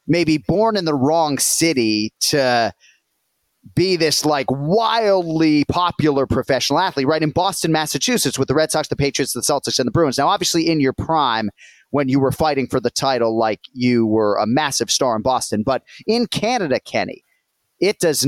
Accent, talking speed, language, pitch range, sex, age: American, 180 wpm, English, 130-165 Hz, male, 30-49